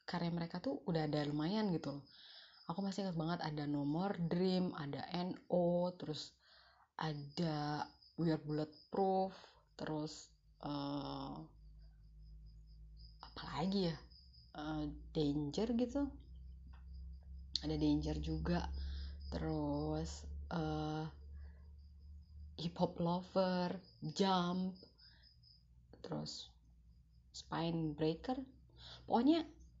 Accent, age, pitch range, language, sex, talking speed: native, 30-49, 140-180 Hz, Indonesian, female, 90 wpm